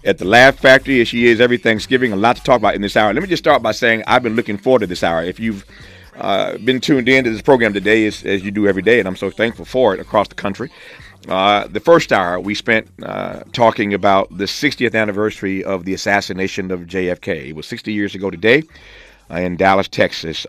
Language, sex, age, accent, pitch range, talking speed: English, male, 40-59, American, 90-105 Hz, 235 wpm